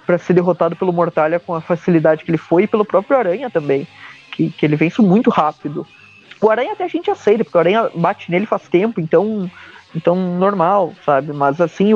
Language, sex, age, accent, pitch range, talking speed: Portuguese, male, 20-39, Brazilian, 165-210 Hz, 200 wpm